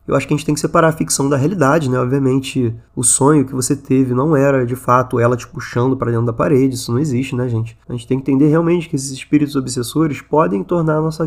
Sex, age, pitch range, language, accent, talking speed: male, 20-39, 130-155 Hz, Portuguese, Brazilian, 260 wpm